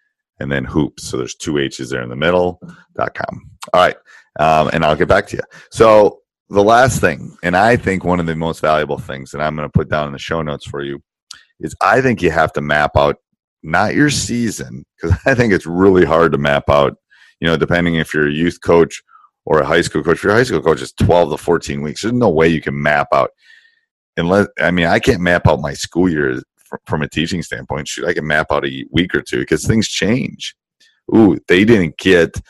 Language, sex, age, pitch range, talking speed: English, male, 40-59, 75-100 Hz, 230 wpm